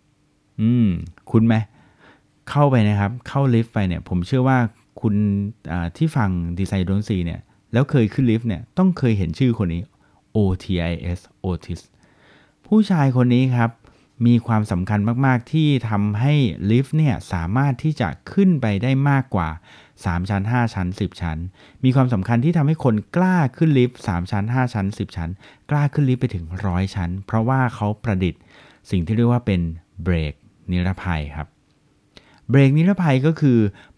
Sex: male